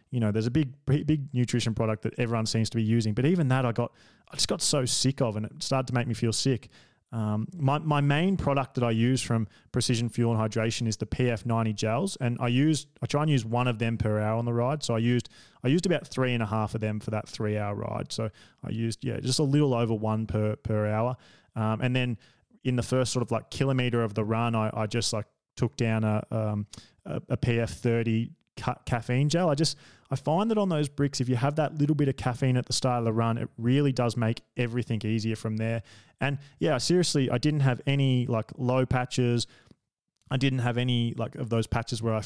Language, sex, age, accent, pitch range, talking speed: English, male, 20-39, Australian, 110-130 Hz, 245 wpm